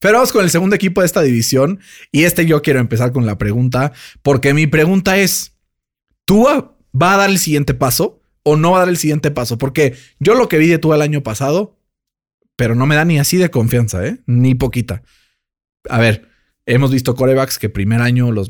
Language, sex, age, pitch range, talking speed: Spanish, male, 30-49, 115-150 Hz, 215 wpm